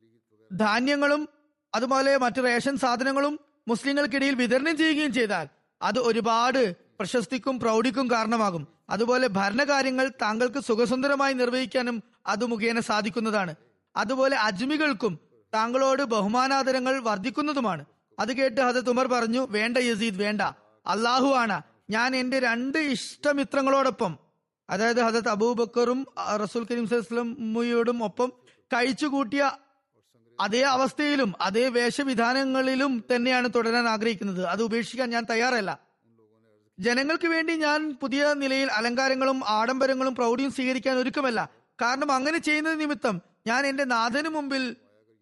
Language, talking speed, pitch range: Malayalam, 100 wpm, 220-270 Hz